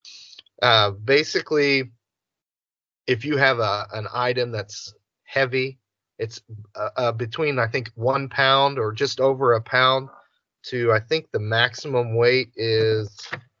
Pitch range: 110-130 Hz